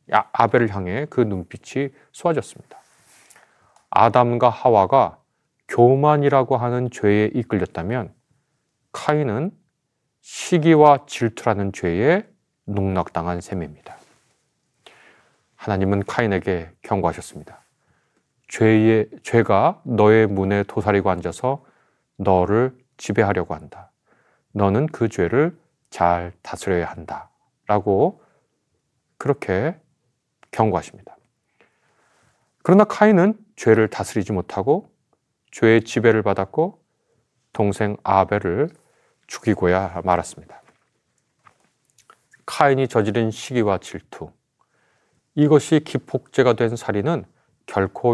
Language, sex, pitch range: Korean, male, 100-140 Hz